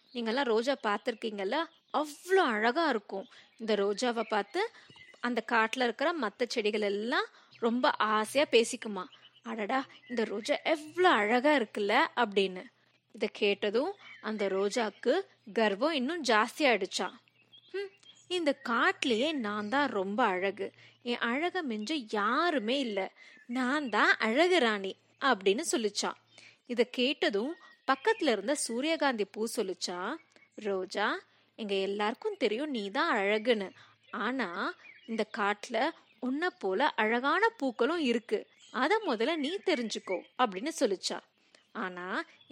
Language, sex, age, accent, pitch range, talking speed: Tamil, female, 20-39, native, 210-300 Hz, 105 wpm